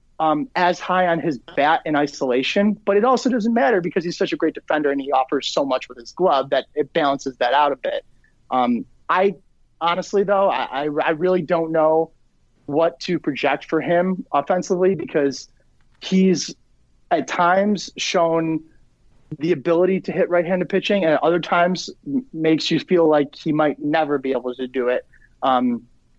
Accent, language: American, English